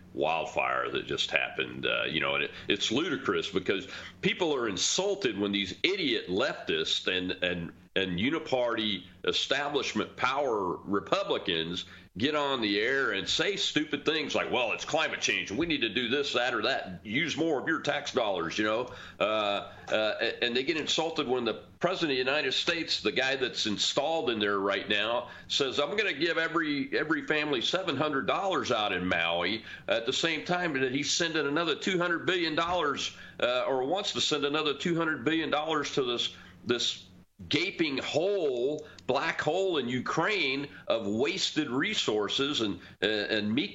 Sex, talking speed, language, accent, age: male, 170 wpm, English, American, 40-59